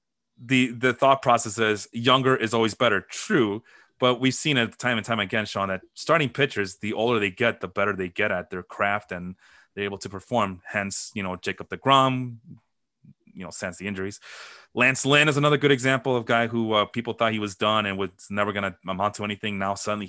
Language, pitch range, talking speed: English, 100-130 Hz, 220 wpm